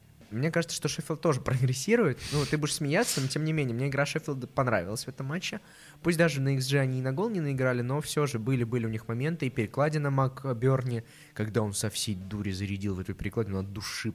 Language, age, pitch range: Russian, 20-39, 110-150 Hz